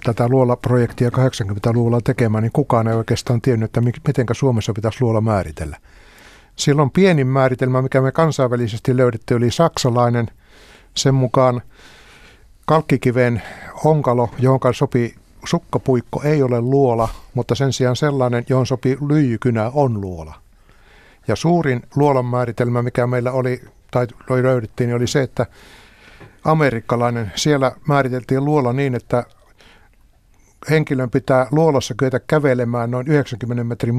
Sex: male